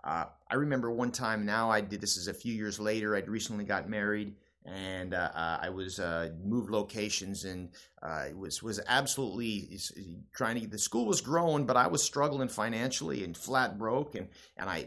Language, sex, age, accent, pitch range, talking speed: English, male, 30-49, American, 100-135 Hz, 200 wpm